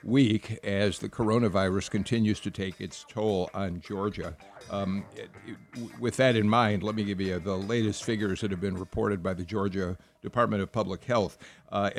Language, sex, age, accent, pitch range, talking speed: English, male, 60-79, American, 100-115 Hz, 185 wpm